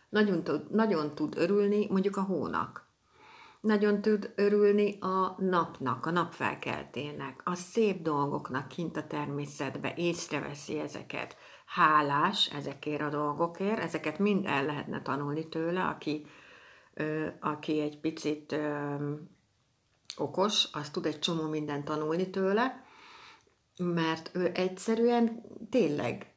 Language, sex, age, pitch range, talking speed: Hungarian, female, 60-79, 150-190 Hz, 115 wpm